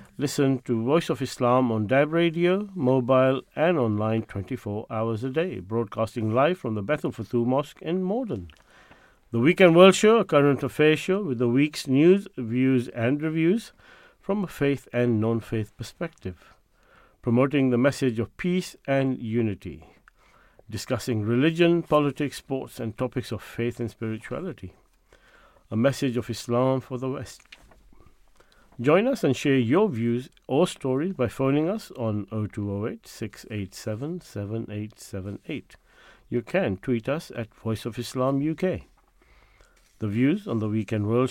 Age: 50-69